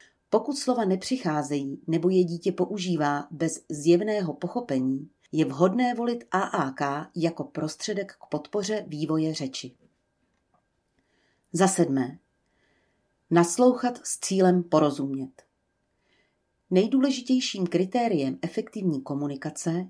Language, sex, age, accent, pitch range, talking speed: Czech, female, 40-59, native, 150-200 Hz, 90 wpm